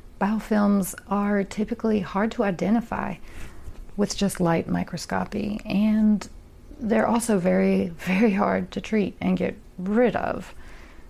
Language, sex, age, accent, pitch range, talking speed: English, female, 30-49, American, 190-225 Hz, 120 wpm